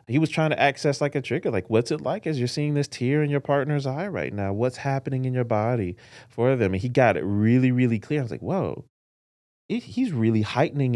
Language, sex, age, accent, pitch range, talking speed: English, male, 30-49, American, 95-125 Hz, 240 wpm